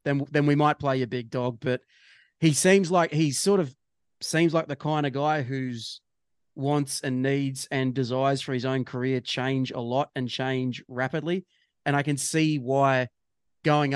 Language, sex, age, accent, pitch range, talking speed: English, male, 30-49, Australian, 130-150 Hz, 185 wpm